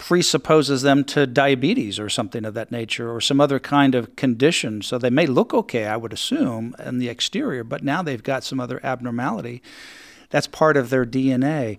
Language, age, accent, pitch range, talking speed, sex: English, 50-69, American, 125-150 Hz, 195 wpm, male